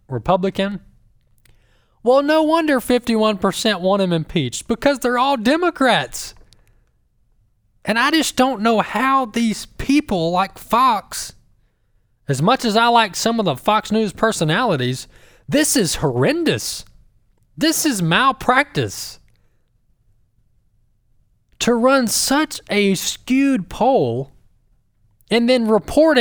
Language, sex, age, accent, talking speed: English, male, 20-39, American, 110 wpm